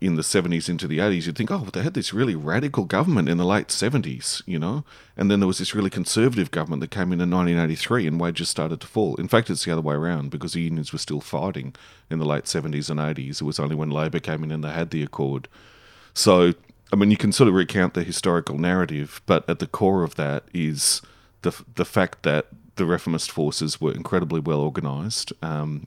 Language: English